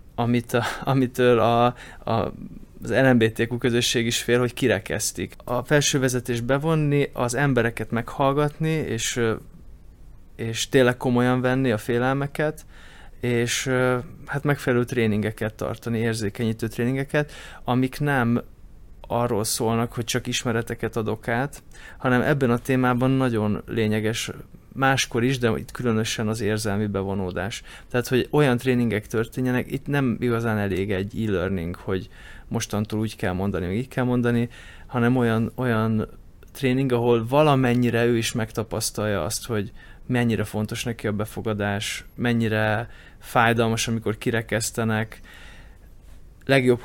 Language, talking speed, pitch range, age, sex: Hungarian, 125 wpm, 110-125 Hz, 20-39, male